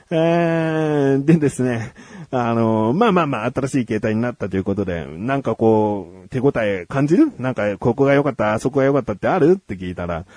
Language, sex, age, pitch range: Japanese, male, 40-59, 110-180 Hz